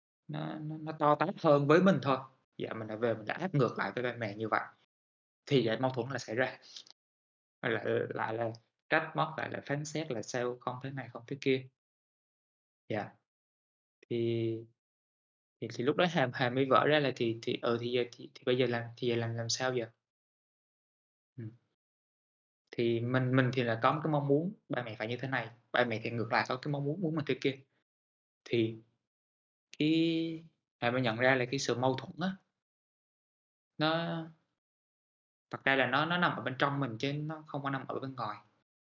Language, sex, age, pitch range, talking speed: Vietnamese, male, 20-39, 115-140 Hz, 210 wpm